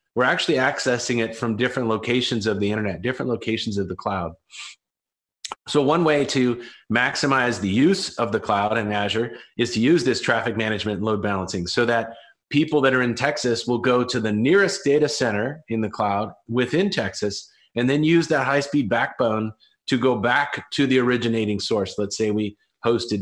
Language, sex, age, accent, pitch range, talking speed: English, male, 30-49, American, 105-130 Hz, 185 wpm